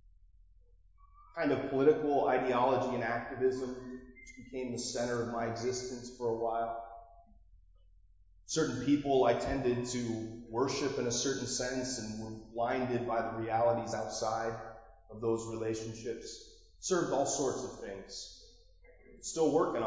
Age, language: 30-49, English